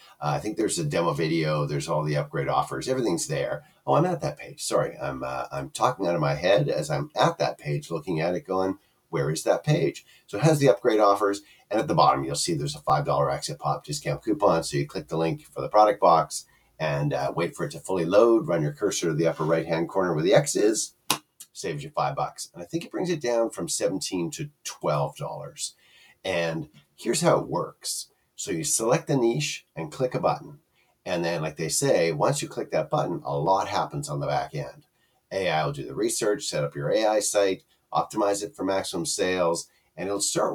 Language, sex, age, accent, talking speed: English, male, 50-69, American, 225 wpm